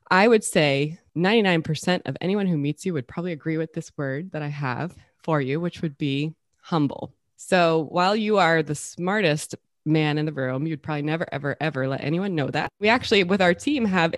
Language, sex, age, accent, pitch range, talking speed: English, female, 20-39, American, 145-175 Hz, 205 wpm